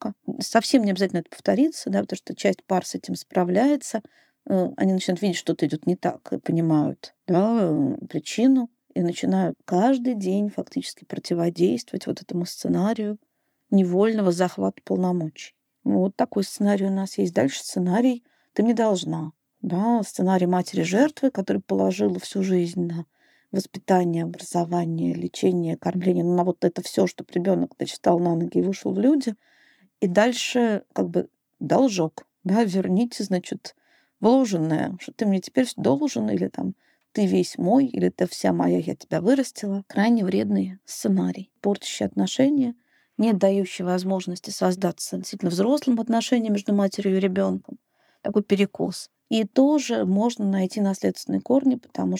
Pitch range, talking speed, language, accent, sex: 175-230 Hz, 140 wpm, Russian, native, female